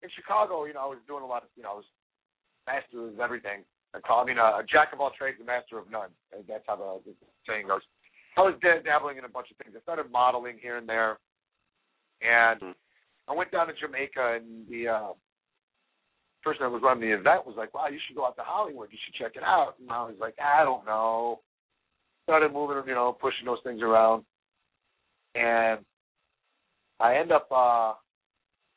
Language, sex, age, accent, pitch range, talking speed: English, male, 40-59, American, 115-140 Hz, 205 wpm